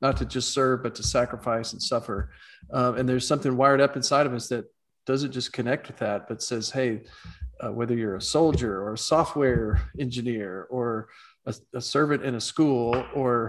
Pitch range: 115-135 Hz